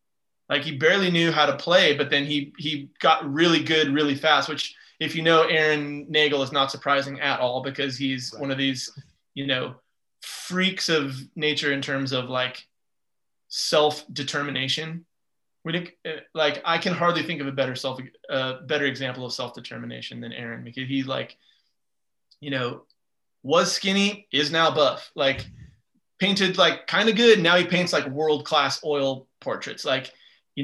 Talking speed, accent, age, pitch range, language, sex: 165 wpm, American, 20-39, 135-165 Hz, English, male